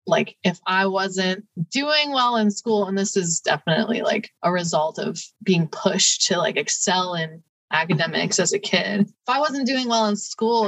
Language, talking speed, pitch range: English, 185 wpm, 180-230 Hz